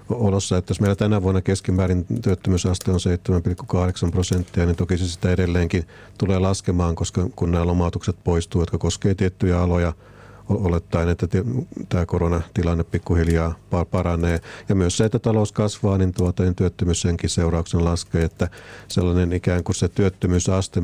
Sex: male